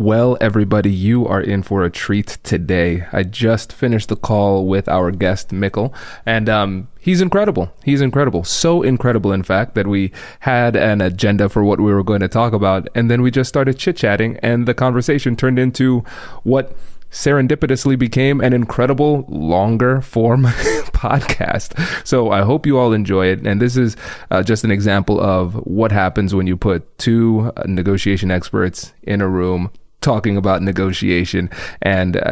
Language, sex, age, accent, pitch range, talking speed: English, male, 20-39, American, 100-120 Hz, 165 wpm